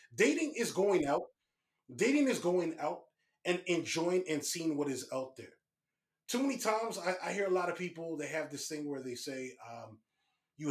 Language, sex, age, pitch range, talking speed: English, male, 30-49, 140-180 Hz, 195 wpm